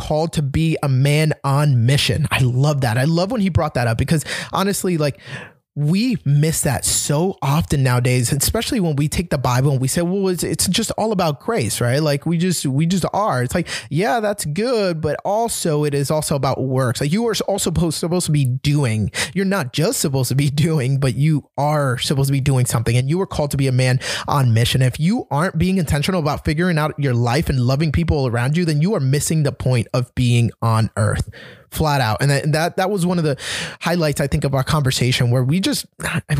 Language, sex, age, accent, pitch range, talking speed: English, male, 20-39, American, 125-165 Hz, 230 wpm